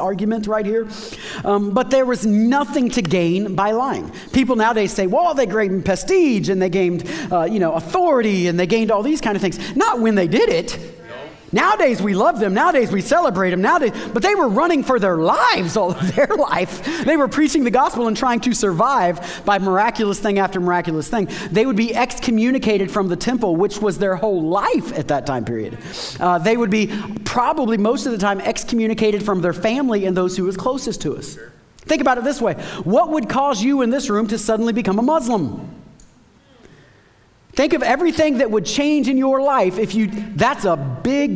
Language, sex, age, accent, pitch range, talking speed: English, male, 40-59, American, 180-235 Hz, 205 wpm